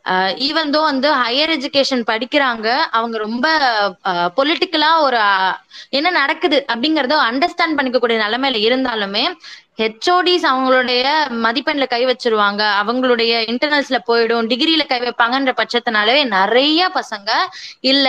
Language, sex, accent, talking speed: Tamil, female, native, 105 wpm